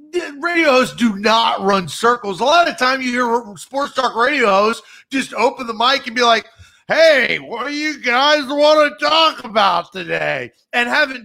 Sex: male